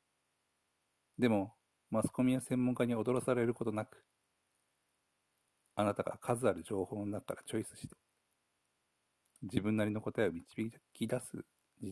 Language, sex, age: Japanese, male, 50-69